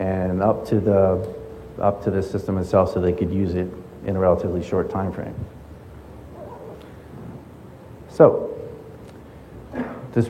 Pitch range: 95-120 Hz